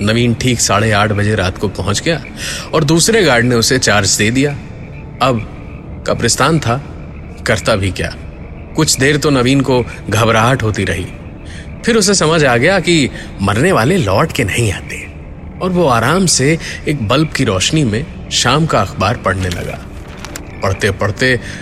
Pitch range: 100-140 Hz